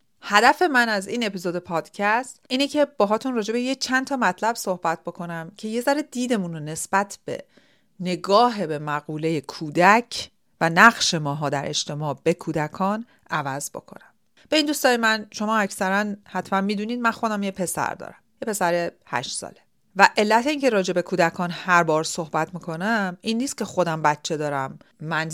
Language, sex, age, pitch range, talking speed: Persian, female, 40-59, 165-230 Hz, 170 wpm